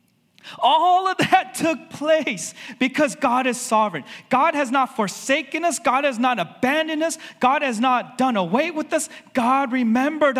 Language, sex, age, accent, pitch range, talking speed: English, male, 30-49, American, 195-255 Hz, 160 wpm